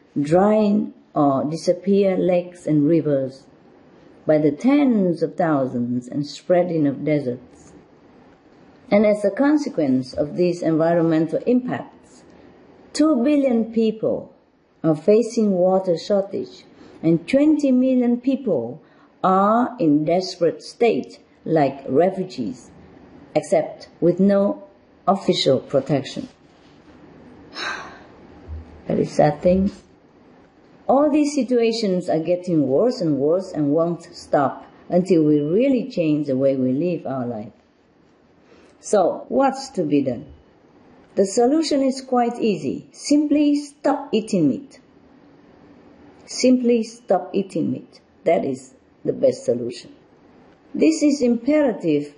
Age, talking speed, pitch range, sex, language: 50-69, 110 wpm, 160-245 Hz, female, English